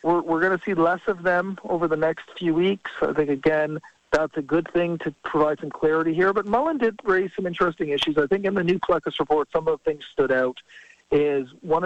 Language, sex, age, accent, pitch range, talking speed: English, male, 50-69, American, 130-160 Hz, 235 wpm